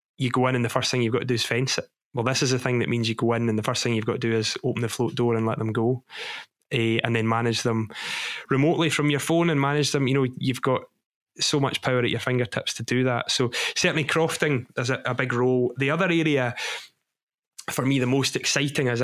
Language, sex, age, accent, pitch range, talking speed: English, male, 20-39, British, 115-135 Hz, 260 wpm